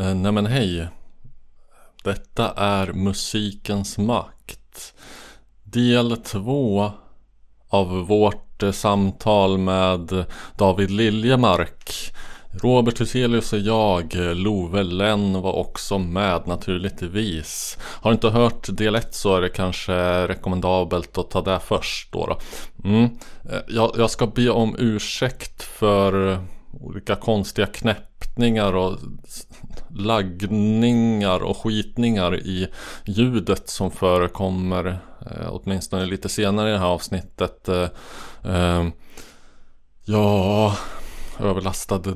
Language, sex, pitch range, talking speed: Swedish, male, 90-105 Hz, 100 wpm